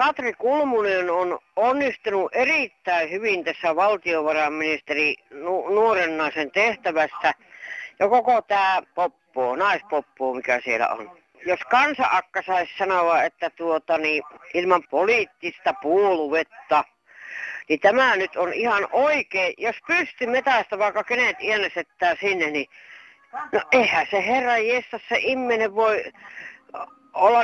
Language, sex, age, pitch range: Finnish, female, 60-79, 175-250 Hz